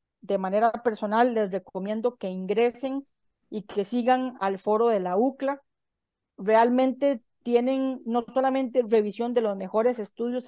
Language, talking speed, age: Spanish, 135 wpm, 40-59